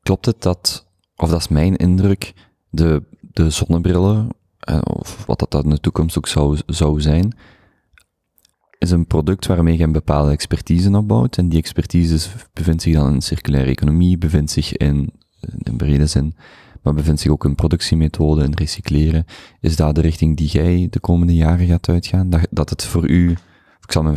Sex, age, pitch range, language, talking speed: male, 30-49, 75-95 Hz, Dutch, 180 wpm